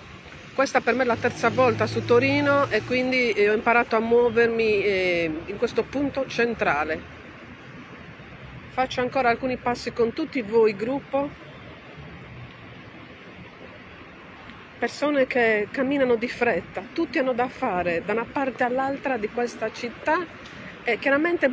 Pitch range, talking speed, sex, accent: 230-270 Hz, 125 wpm, female, native